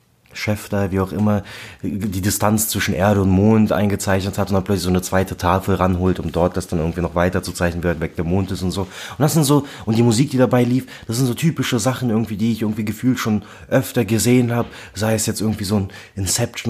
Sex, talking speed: male, 250 wpm